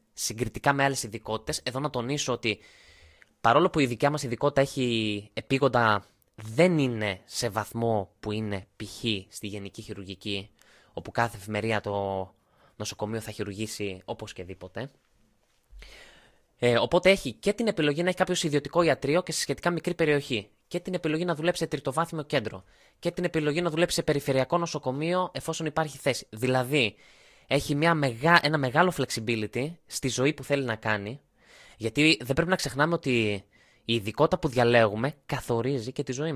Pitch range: 110-155 Hz